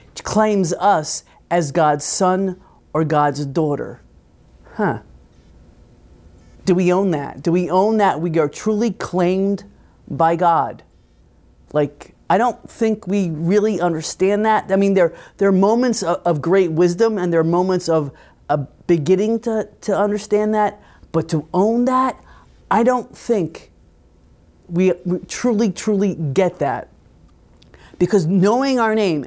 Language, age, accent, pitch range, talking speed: English, 30-49, American, 145-200 Hz, 140 wpm